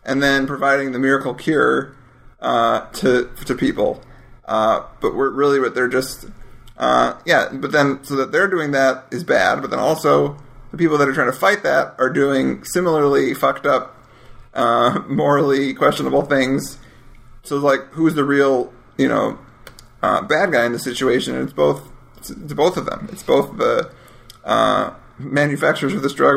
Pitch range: 125-140 Hz